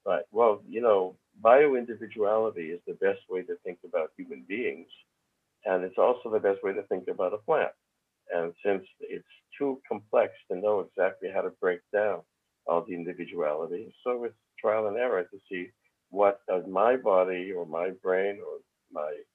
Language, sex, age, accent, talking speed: English, male, 60-79, American, 175 wpm